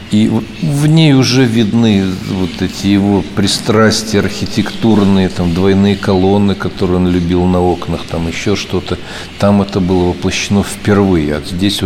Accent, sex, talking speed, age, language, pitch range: native, male, 140 wpm, 50-69, Russian, 90-100 Hz